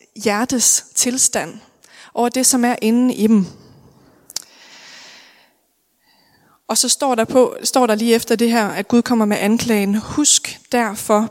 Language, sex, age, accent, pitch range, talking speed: Danish, female, 20-39, native, 210-250 Hz, 145 wpm